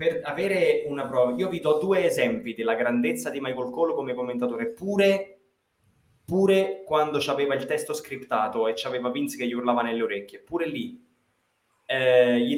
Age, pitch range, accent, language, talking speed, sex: 20-39, 125-180 Hz, native, Italian, 165 wpm, male